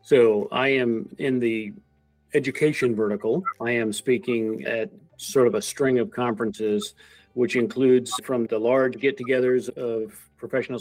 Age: 50-69